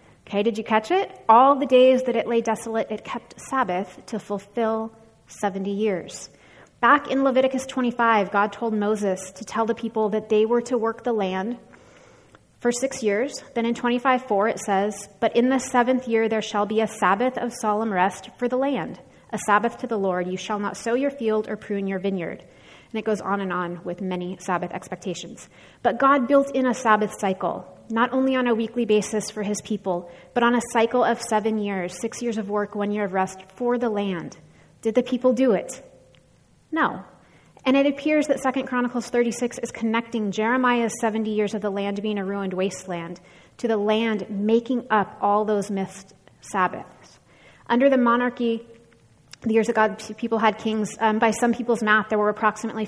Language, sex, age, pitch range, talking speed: English, female, 30-49, 200-240 Hz, 195 wpm